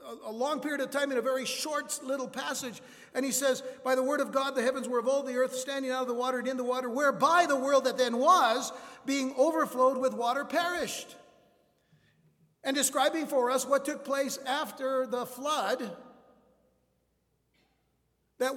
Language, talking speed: English, 185 wpm